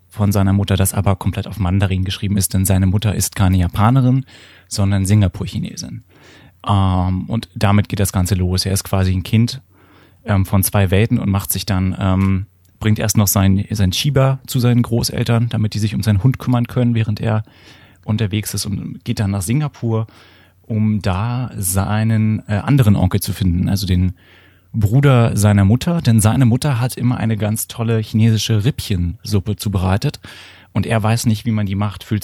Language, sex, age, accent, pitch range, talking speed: German, male, 30-49, German, 100-115 Hz, 180 wpm